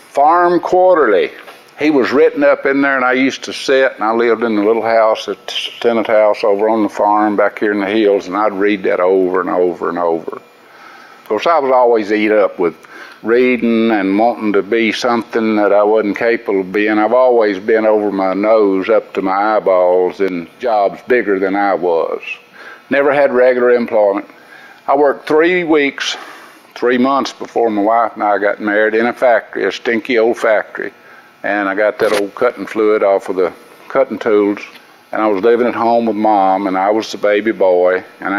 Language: English